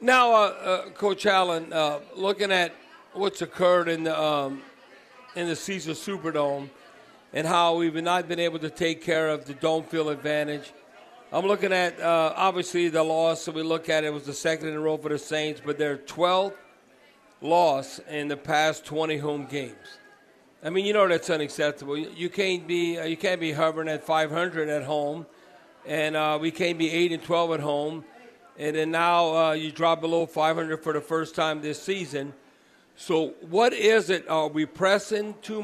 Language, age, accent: English, 50-69, American